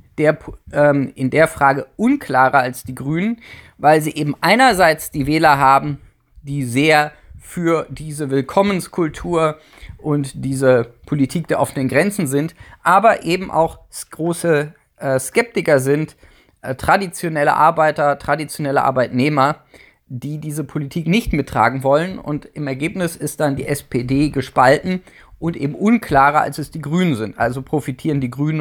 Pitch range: 140-175 Hz